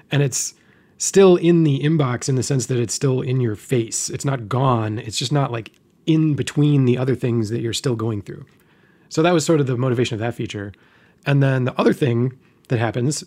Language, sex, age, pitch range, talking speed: English, male, 30-49, 115-145 Hz, 220 wpm